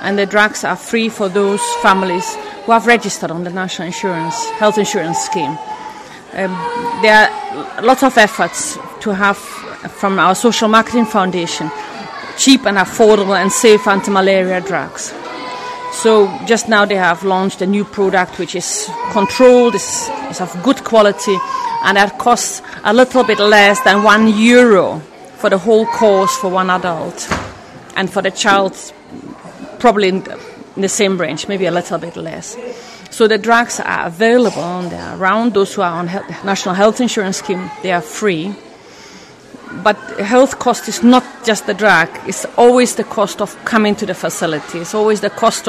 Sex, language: female, English